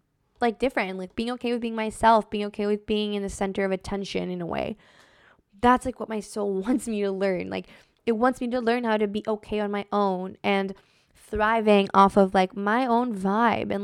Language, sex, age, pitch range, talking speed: English, female, 10-29, 190-225 Hz, 220 wpm